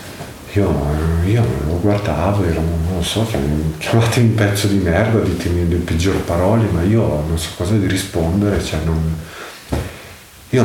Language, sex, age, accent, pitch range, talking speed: Italian, male, 50-69, native, 90-110 Hz, 140 wpm